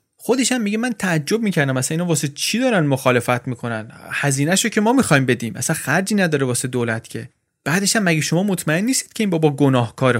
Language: Persian